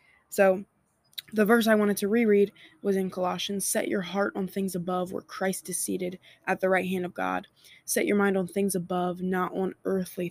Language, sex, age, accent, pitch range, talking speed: English, female, 20-39, American, 185-205 Hz, 205 wpm